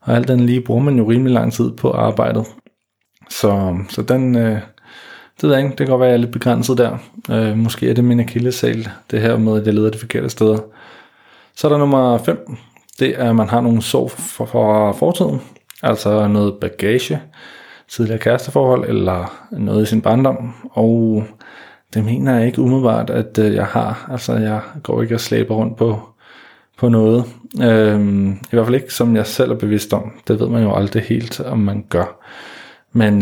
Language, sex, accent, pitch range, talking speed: Danish, male, native, 105-120 Hz, 195 wpm